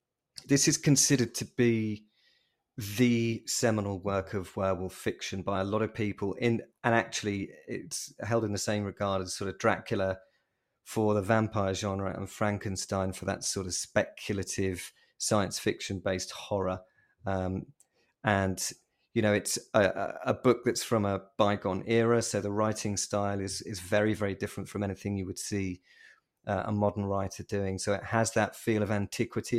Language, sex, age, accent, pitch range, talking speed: English, male, 30-49, British, 95-115 Hz, 170 wpm